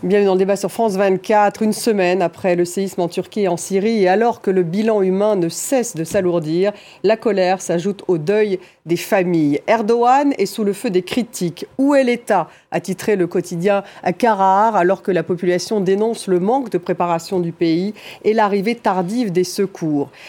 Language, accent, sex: French, French, female